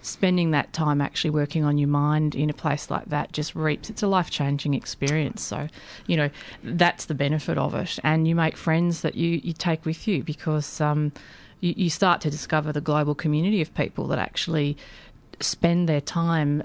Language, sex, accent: English, female, Australian